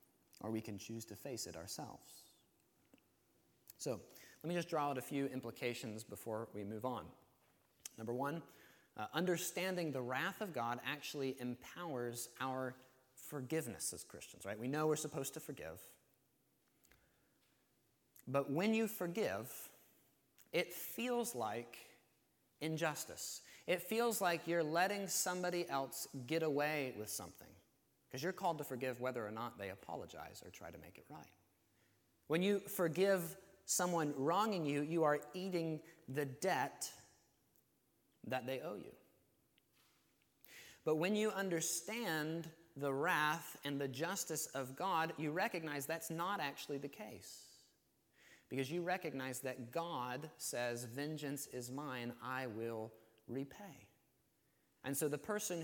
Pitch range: 125-170 Hz